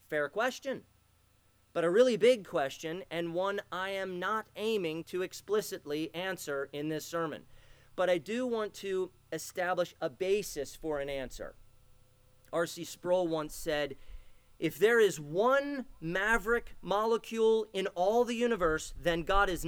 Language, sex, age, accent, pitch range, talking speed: English, male, 40-59, American, 145-200 Hz, 145 wpm